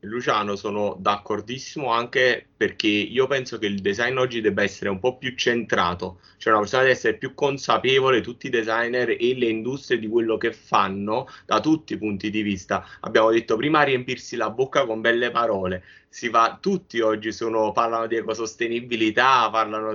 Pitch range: 115-150 Hz